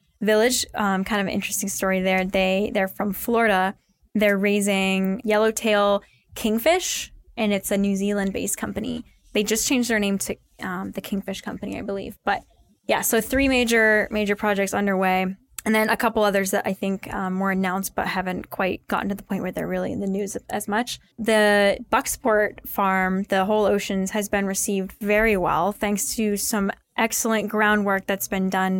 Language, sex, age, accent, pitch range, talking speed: English, female, 10-29, American, 195-215 Hz, 180 wpm